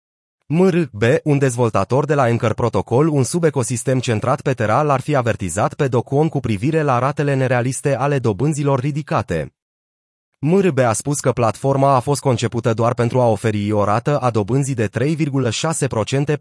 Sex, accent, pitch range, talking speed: male, native, 115-145 Hz, 155 wpm